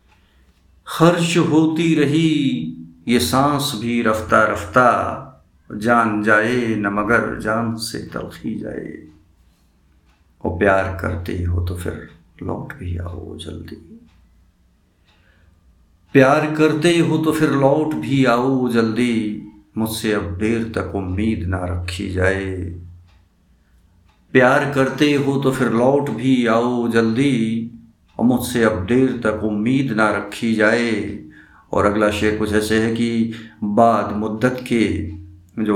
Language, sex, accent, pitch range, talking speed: Hindi, male, native, 85-120 Hz, 120 wpm